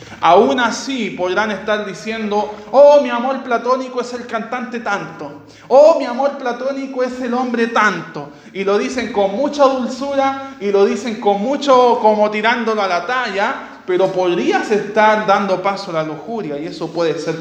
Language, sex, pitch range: Spanish, male, 185-245 Hz